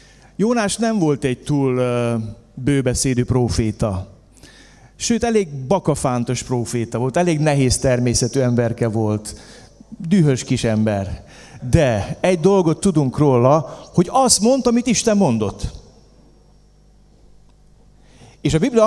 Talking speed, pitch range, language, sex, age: 110 wpm, 125-195 Hz, Hungarian, male, 30-49